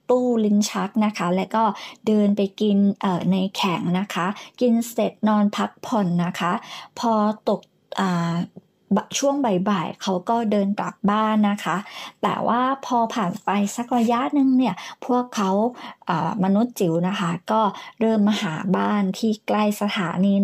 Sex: male